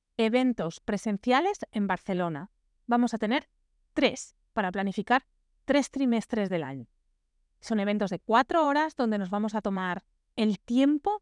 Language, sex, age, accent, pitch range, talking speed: Spanish, female, 30-49, Spanish, 185-245 Hz, 140 wpm